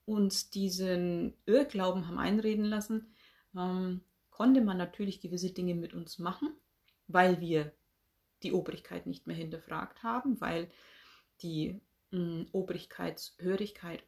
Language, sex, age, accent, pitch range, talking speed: German, female, 30-49, German, 175-215 Hz, 105 wpm